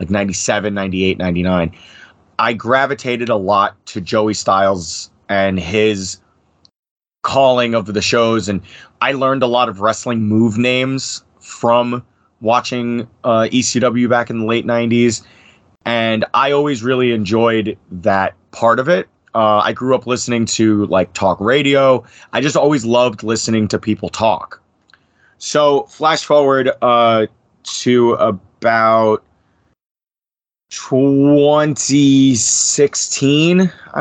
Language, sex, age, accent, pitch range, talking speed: English, male, 30-49, American, 105-125 Hz, 120 wpm